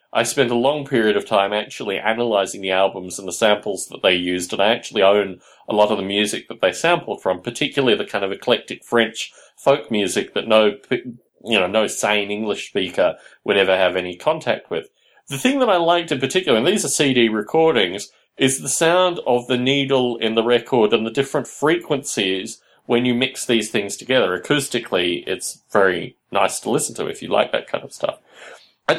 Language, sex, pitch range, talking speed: English, male, 105-140 Hz, 205 wpm